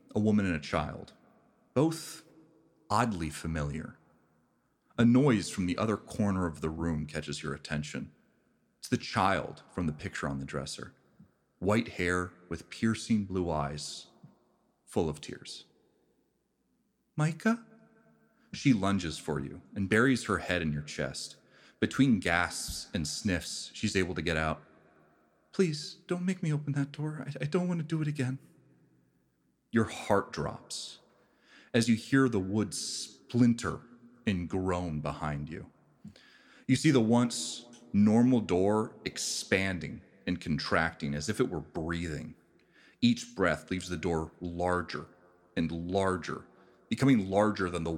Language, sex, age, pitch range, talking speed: English, male, 40-59, 80-120 Hz, 140 wpm